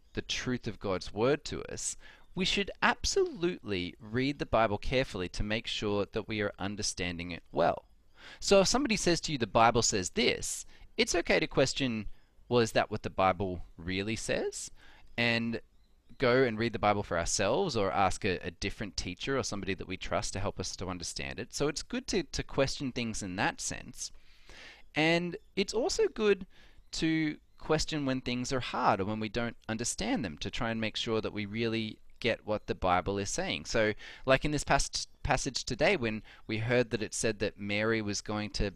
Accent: Australian